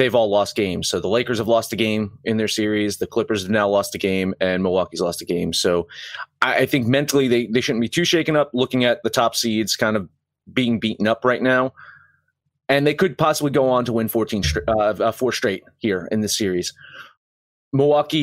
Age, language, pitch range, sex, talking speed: 30-49, English, 110-150 Hz, male, 220 wpm